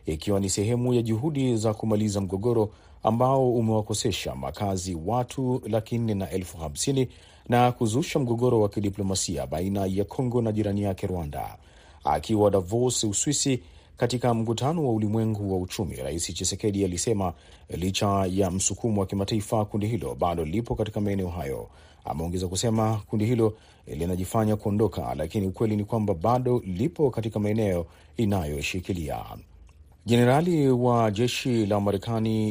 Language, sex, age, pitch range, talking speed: Swahili, male, 40-59, 95-120 Hz, 125 wpm